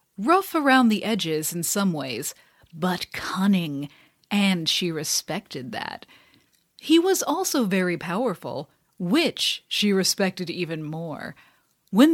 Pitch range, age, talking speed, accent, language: 175-245 Hz, 40-59, 120 wpm, American, English